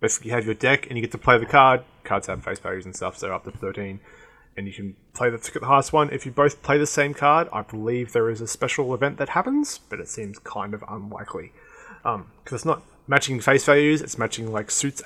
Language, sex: English, male